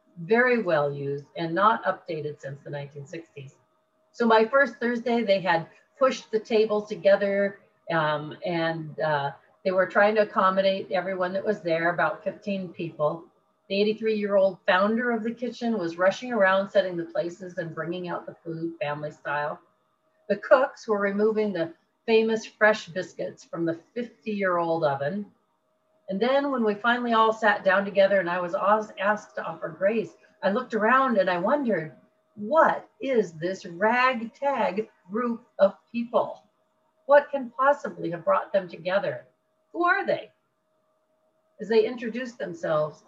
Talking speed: 150 wpm